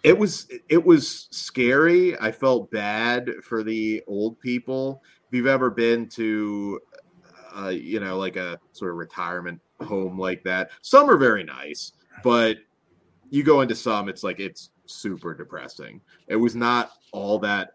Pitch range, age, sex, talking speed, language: 95-125 Hz, 30-49, male, 160 wpm, English